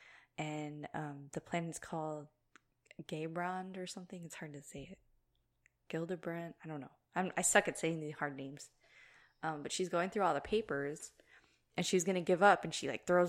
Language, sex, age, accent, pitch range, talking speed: English, female, 20-39, American, 155-185 Hz, 195 wpm